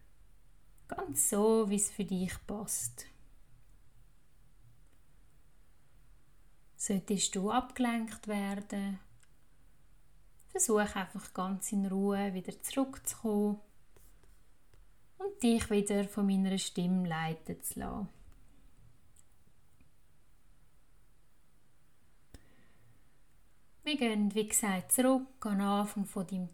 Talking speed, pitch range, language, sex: 80 wpm, 185-215 Hz, German, female